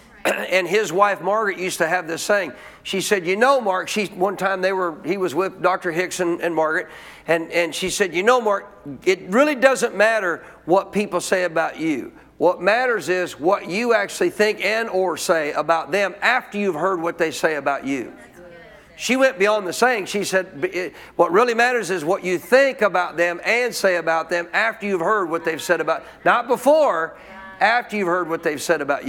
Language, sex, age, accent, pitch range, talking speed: English, male, 50-69, American, 180-235 Hz, 205 wpm